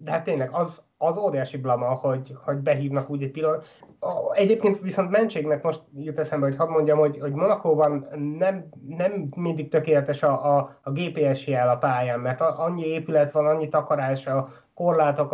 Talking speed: 170 wpm